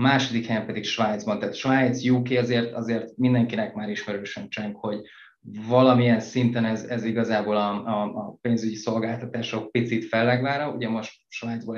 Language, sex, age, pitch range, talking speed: Hungarian, male, 20-39, 110-125 Hz, 150 wpm